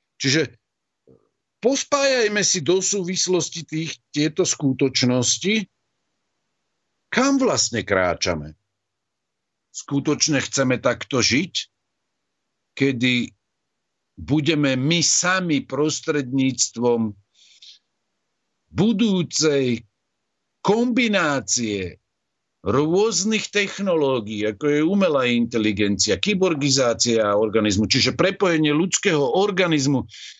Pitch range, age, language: 115-165 Hz, 50-69, Slovak